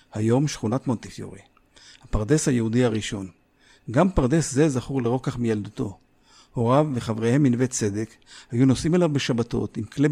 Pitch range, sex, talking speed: 120-155 Hz, male, 130 wpm